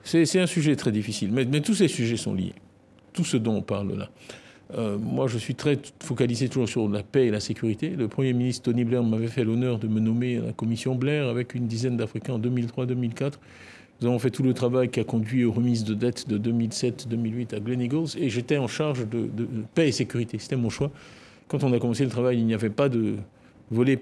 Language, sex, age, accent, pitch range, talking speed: French, male, 50-69, French, 110-135 Hz, 240 wpm